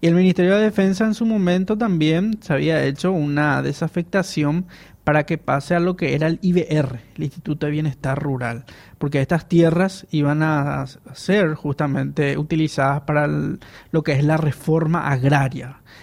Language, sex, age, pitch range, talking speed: Spanish, male, 20-39, 145-175 Hz, 160 wpm